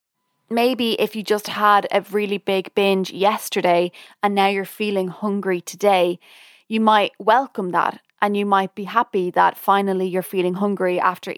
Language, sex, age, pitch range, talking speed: English, female, 20-39, 185-210 Hz, 165 wpm